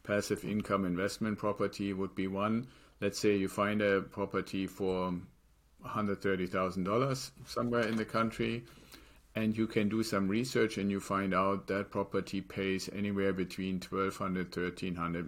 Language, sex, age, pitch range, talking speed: English, male, 50-69, 90-105 Hz, 145 wpm